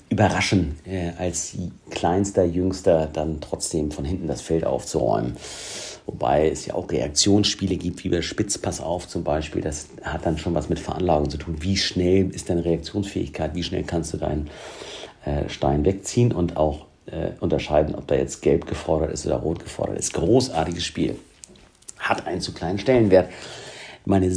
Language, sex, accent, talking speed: German, male, German, 160 wpm